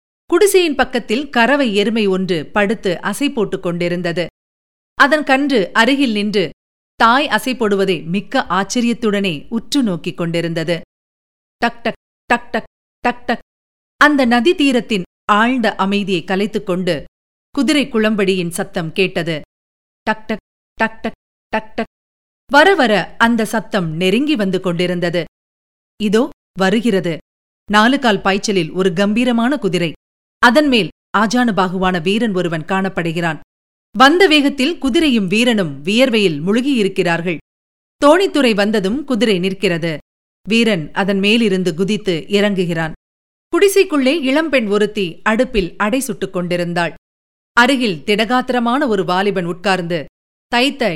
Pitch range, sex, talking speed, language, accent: 180-240 Hz, female, 105 wpm, Tamil, native